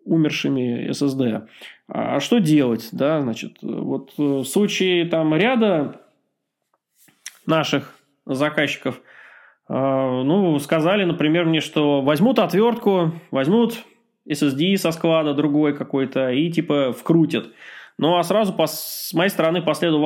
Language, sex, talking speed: Russian, male, 115 wpm